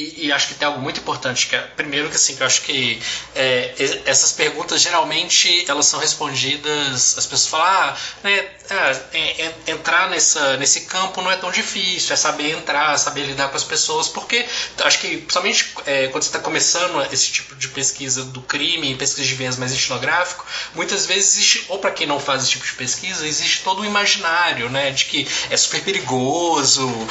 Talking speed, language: 195 wpm, Portuguese